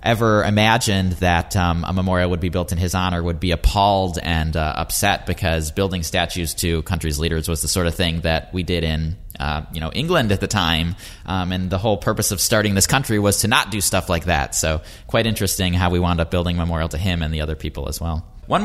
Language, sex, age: English, male, 20-39